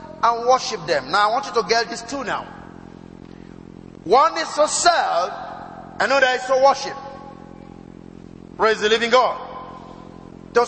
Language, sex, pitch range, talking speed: English, male, 215-285 Hz, 140 wpm